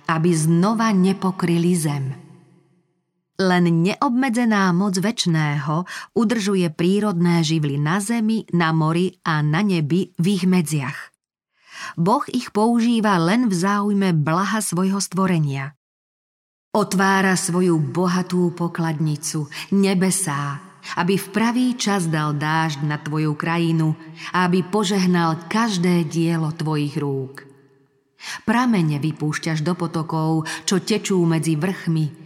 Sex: female